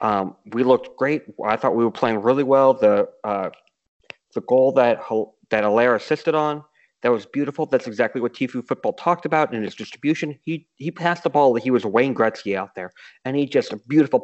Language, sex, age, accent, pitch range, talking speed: English, male, 30-49, American, 120-155 Hz, 210 wpm